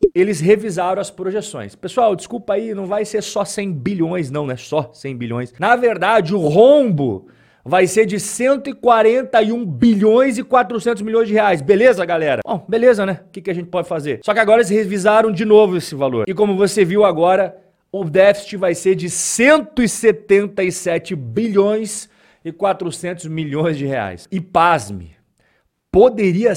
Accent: Brazilian